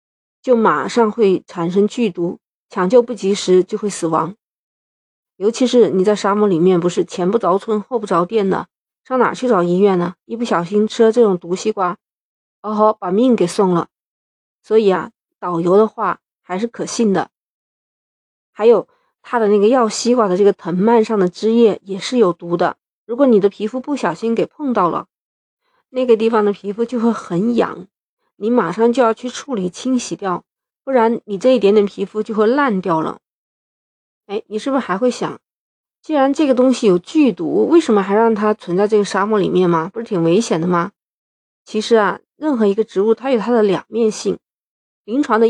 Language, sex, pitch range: Chinese, female, 190-235 Hz